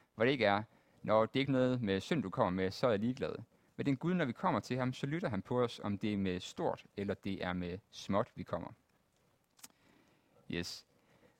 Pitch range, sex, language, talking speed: 95-130 Hz, male, Danish, 230 wpm